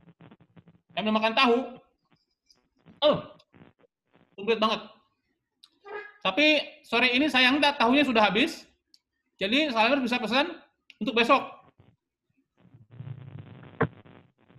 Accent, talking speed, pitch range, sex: native, 90 wpm, 195-285 Hz, male